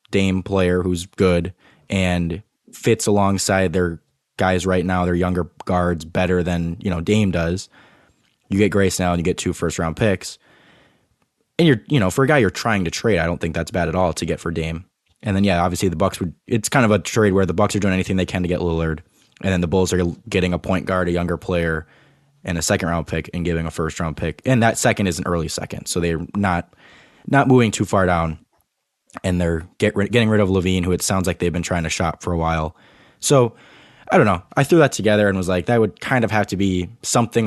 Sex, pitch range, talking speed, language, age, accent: male, 85-100 Hz, 240 wpm, English, 20-39, American